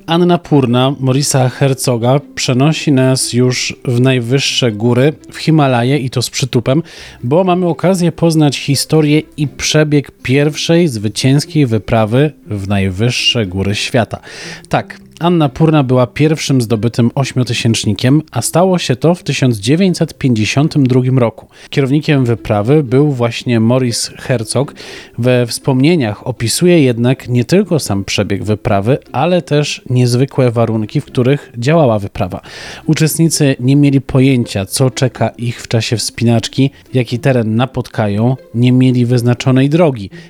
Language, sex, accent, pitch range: Polish, male, native, 120-150 Hz